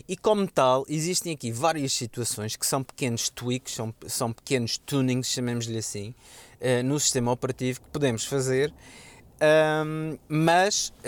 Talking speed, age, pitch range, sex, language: 130 wpm, 20-39, 120-145 Hz, male, Portuguese